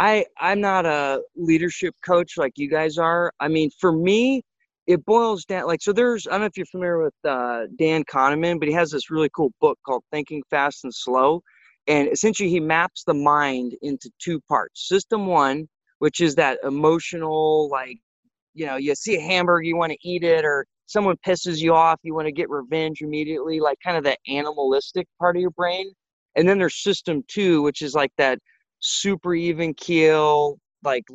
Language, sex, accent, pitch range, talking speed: English, male, American, 150-180 Hz, 195 wpm